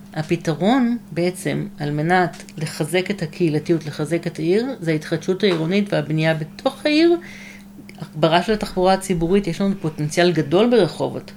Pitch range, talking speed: 165-205 Hz, 130 wpm